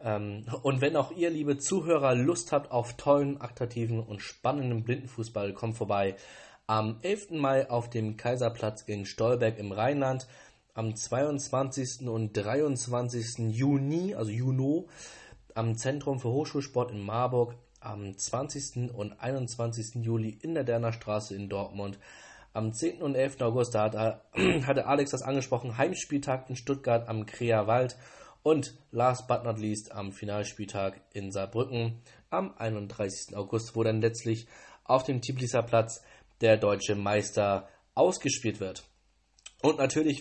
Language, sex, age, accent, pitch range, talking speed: German, male, 20-39, German, 105-135 Hz, 135 wpm